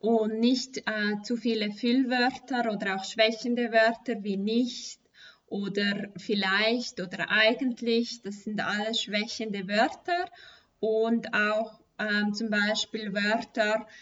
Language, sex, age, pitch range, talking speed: German, female, 20-39, 210-235 Hz, 115 wpm